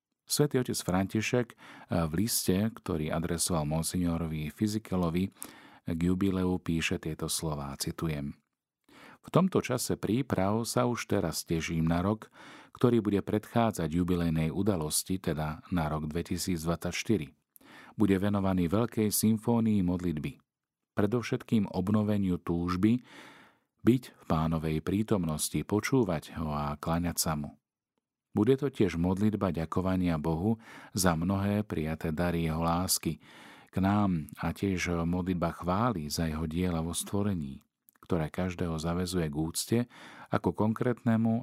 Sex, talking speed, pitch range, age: male, 120 wpm, 80-105 Hz, 40-59